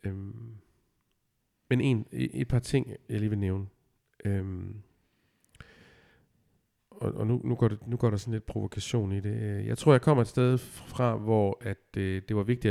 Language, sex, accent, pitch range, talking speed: Danish, male, native, 95-115 Hz, 185 wpm